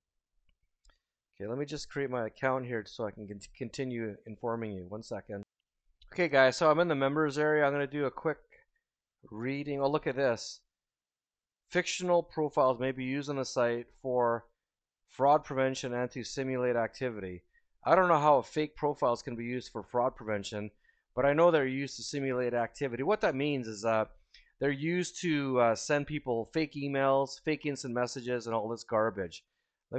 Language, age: English, 30-49